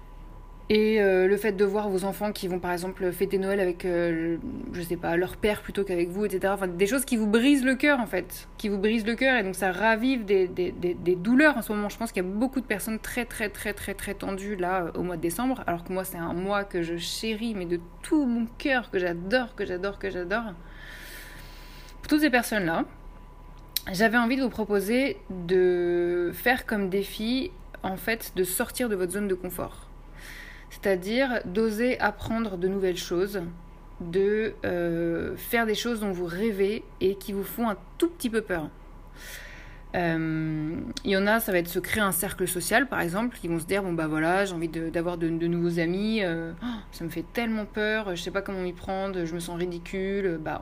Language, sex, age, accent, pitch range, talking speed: French, female, 20-39, French, 175-220 Hz, 220 wpm